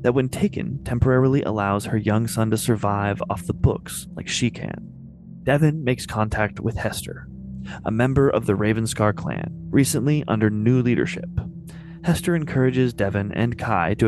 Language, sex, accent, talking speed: English, male, American, 160 wpm